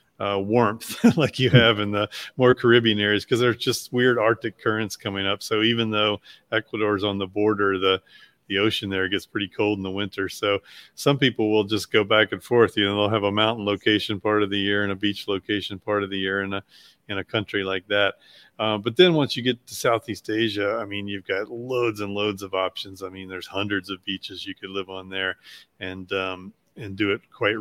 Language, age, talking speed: English, 30-49, 230 wpm